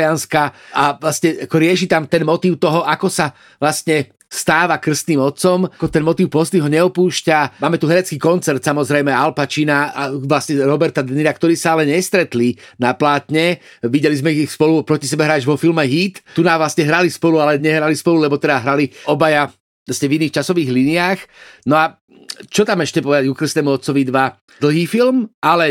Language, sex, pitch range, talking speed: Slovak, male, 145-170 Hz, 180 wpm